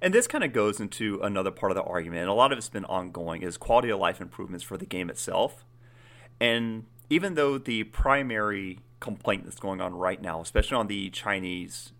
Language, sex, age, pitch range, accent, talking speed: English, male, 30-49, 95-120 Hz, American, 210 wpm